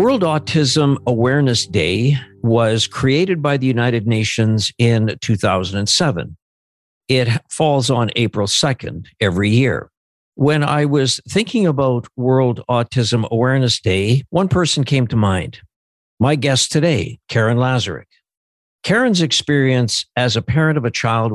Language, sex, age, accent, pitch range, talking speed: English, male, 60-79, American, 110-140 Hz, 130 wpm